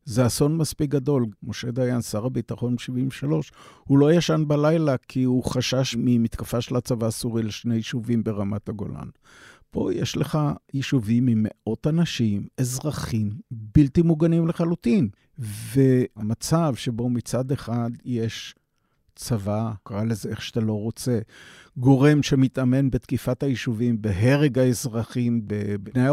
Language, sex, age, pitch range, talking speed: Hebrew, male, 50-69, 115-140 Hz, 125 wpm